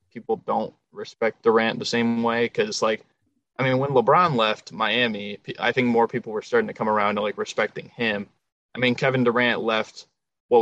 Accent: American